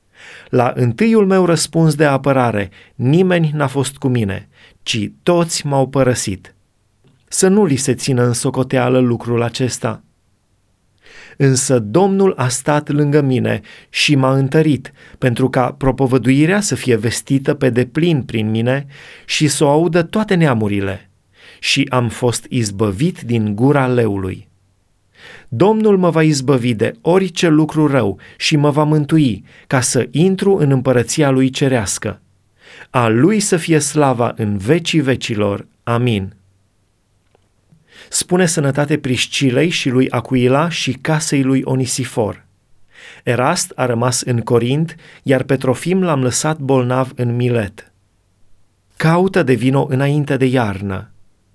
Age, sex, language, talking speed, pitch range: 30-49, male, Romanian, 130 wpm, 115-150 Hz